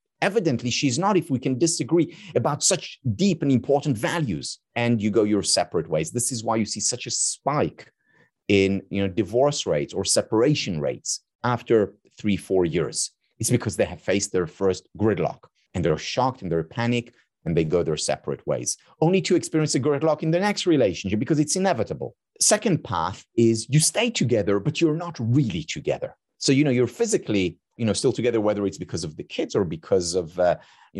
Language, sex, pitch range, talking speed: English, male, 115-160 Hz, 195 wpm